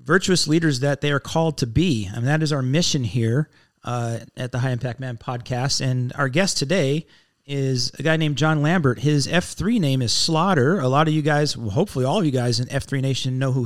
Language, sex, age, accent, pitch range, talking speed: English, male, 40-59, American, 125-155 Hz, 225 wpm